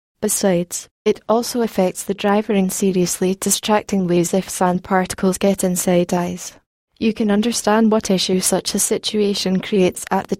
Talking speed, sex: 155 wpm, female